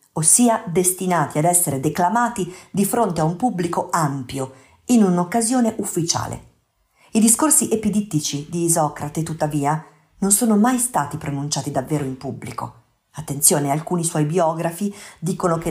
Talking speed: 130 wpm